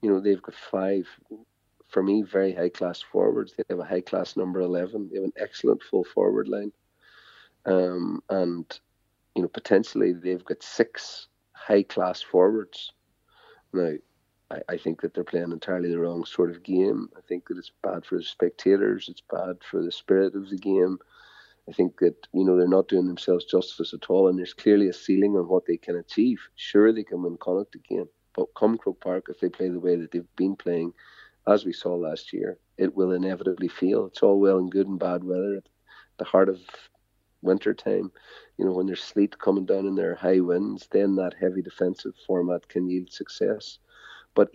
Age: 40-59